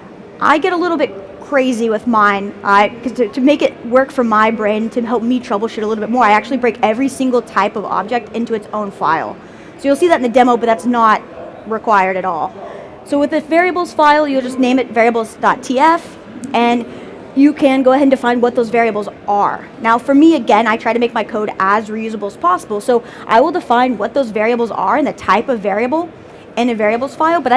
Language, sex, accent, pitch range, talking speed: English, female, American, 215-260 Hz, 225 wpm